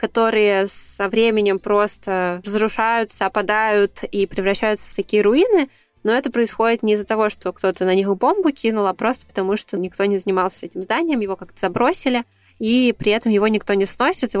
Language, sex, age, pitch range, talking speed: Russian, female, 20-39, 200-230 Hz, 180 wpm